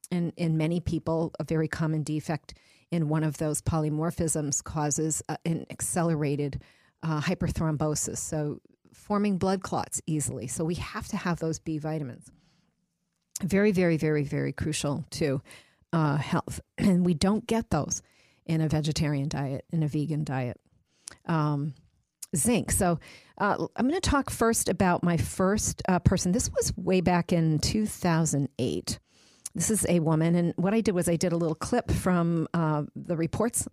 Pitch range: 155-185 Hz